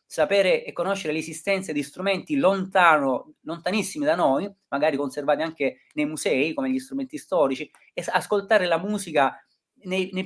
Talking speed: 145 wpm